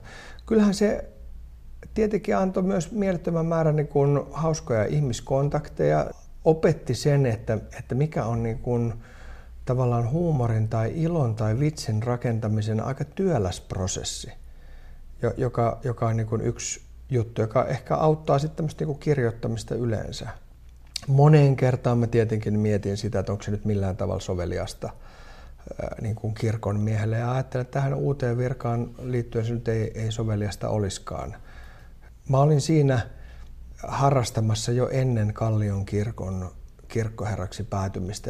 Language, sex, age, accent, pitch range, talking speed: Finnish, male, 50-69, native, 100-135 Hz, 125 wpm